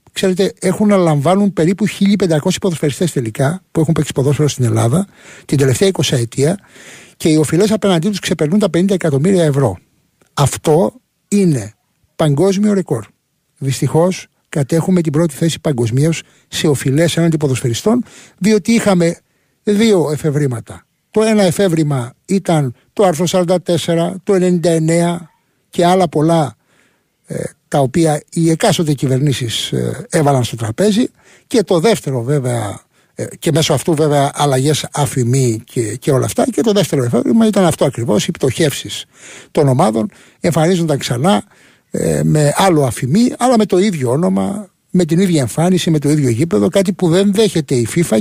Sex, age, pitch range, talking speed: male, 60-79, 140-185 Hz, 150 wpm